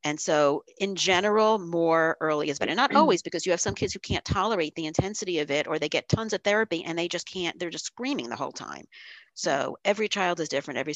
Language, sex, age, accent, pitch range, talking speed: English, female, 40-59, American, 145-180 Hz, 240 wpm